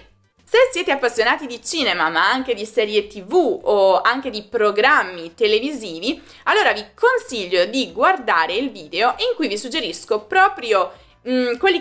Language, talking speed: Italian, 140 wpm